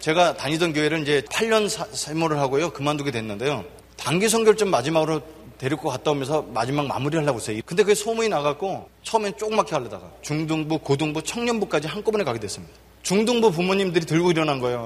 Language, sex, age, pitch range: Korean, male, 30-49, 140-210 Hz